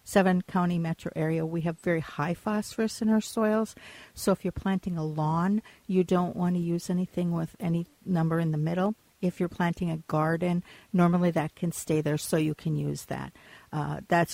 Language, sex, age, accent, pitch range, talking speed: English, female, 50-69, American, 160-185 Hz, 195 wpm